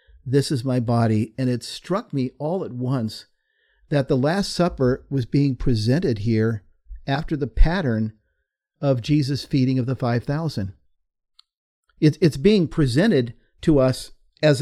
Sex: male